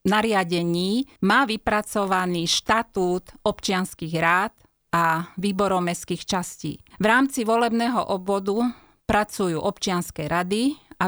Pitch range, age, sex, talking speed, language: 175-210 Hz, 30-49, female, 95 wpm, Slovak